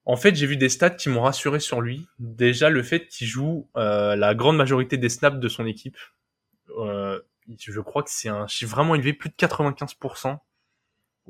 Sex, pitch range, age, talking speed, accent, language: male, 115-145 Hz, 20-39, 195 wpm, French, French